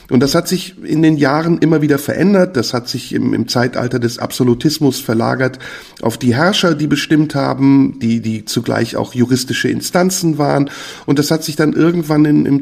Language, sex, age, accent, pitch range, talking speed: German, male, 50-69, German, 125-155 Hz, 190 wpm